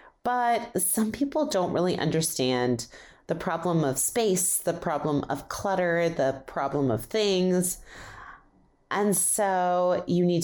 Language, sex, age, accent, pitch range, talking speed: English, female, 30-49, American, 155-215 Hz, 125 wpm